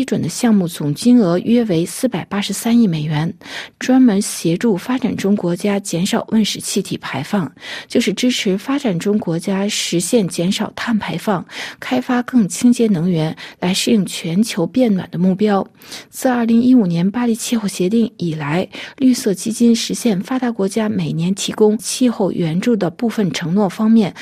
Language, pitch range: Chinese, 185-235 Hz